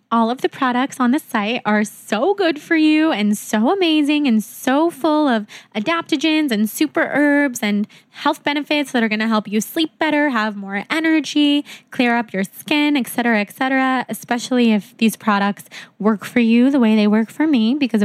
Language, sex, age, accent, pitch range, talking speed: English, female, 10-29, American, 215-265 Hz, 195 wpm